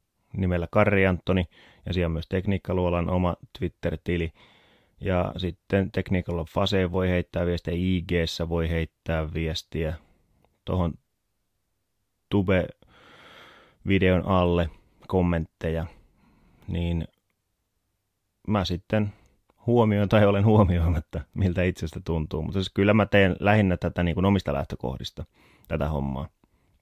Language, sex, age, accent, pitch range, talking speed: Finnish, male, 30-49, native, 85-100 Hz, 105 wpm